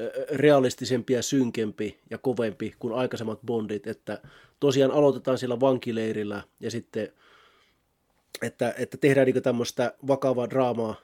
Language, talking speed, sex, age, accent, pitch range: Finnish, 120 wpm, male, 30-49, native, 120-140 Hz